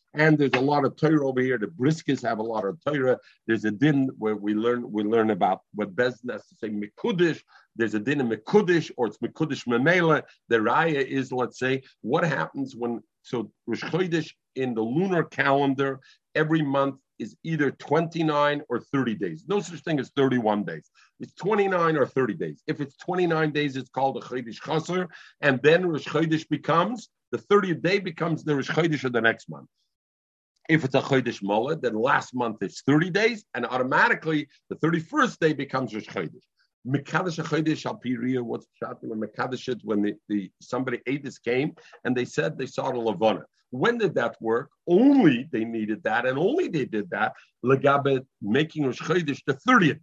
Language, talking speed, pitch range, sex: English, 180 wpm, 125-160 Hz, male